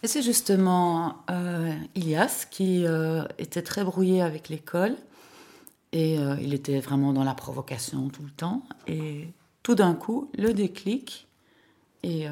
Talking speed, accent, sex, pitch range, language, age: 150 wpm, French, female, 150-190 Hz, French, 30-49